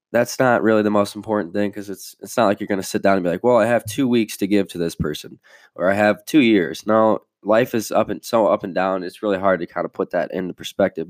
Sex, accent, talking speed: male, American, 290 wpm